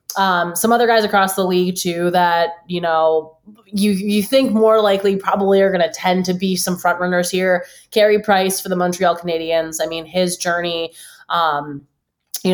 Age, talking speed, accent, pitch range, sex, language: 20-39, 185 wpm, American, 155-180 Hz, female, English